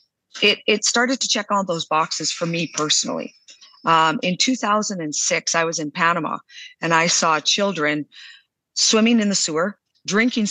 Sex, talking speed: female, 155 wpm